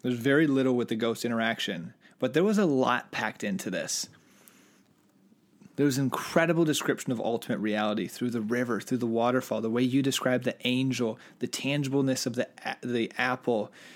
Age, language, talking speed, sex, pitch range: 30-49, English, 175 wpm, male, 120-135 Hz